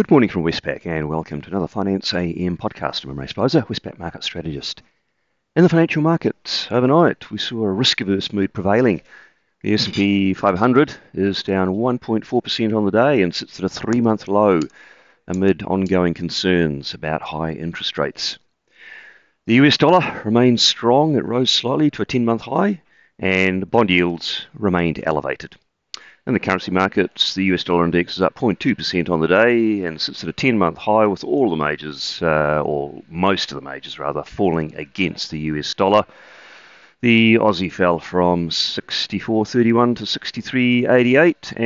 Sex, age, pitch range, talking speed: male, 40-59, 85-115 Hz, 165 wpm